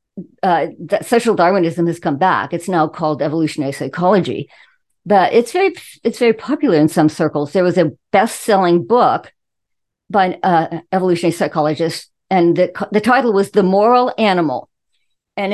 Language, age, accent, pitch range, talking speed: English, 50-69, American, 175-255 Hz, 155 wpm